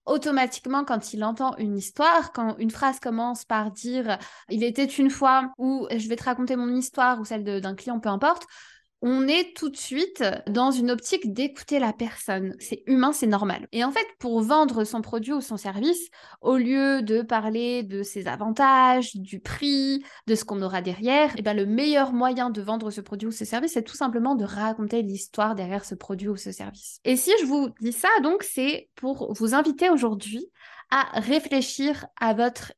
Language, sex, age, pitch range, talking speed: French, female, 20-39, 220-275 Hz, 205 wpm